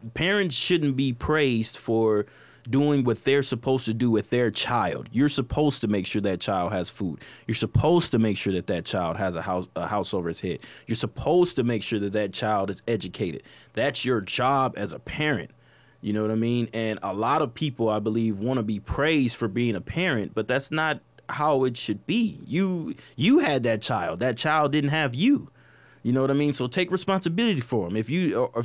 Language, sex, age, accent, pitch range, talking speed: English, male, 20-39, American, 115-150 Hz, 215 wpm